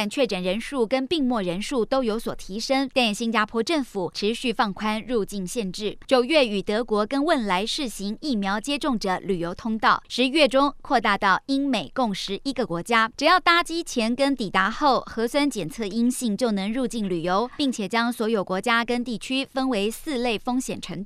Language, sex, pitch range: Chinese, male, 210-270 Hz